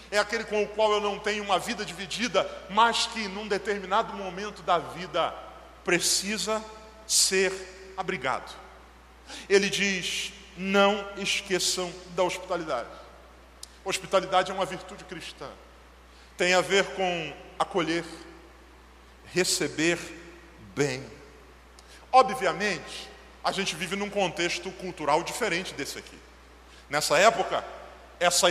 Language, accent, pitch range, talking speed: Portuguese, Brazilian, 180-215 Hz, 110 wpm